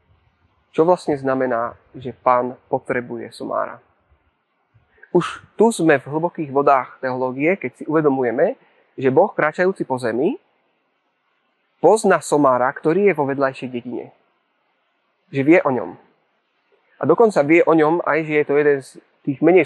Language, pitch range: Slovak, 125-160 Hz